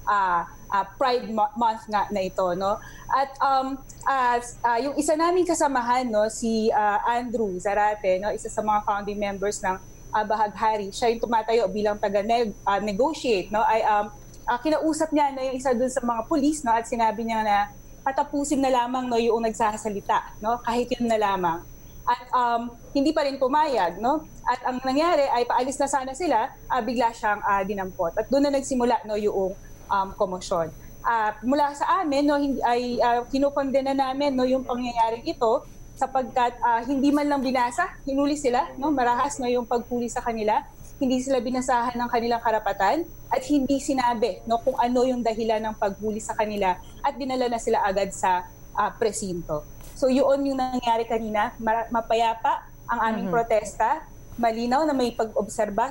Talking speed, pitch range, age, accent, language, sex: 175 wpm, 215-270 Hz, 20-39, Filipino, English, female